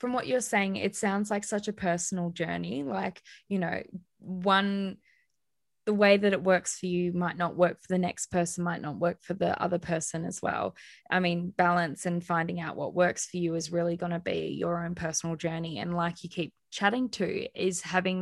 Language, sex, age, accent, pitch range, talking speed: English, female, 10-29, Australian, 165-185 Hz, 215 wpm